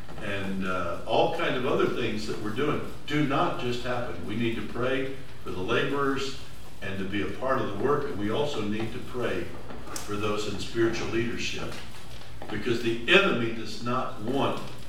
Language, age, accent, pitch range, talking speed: English, 60-79, American, 100-125 Hz, 185 wpm